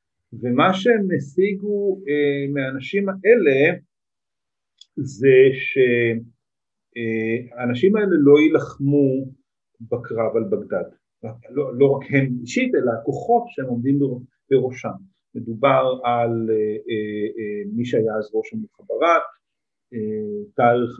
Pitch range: 115-170 Hz